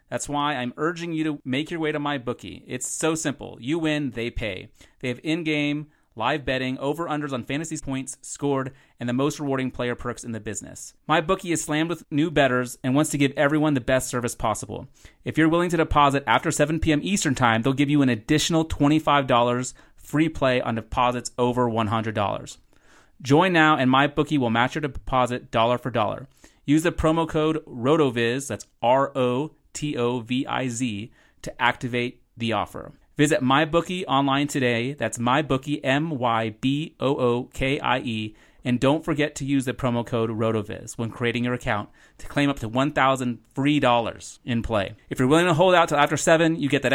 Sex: male